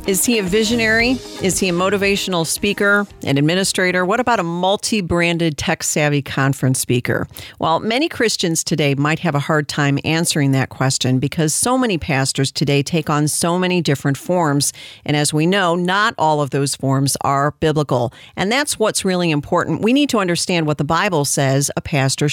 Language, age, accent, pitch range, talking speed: English, 50-69, American, 145-180 Hz, 180 wpm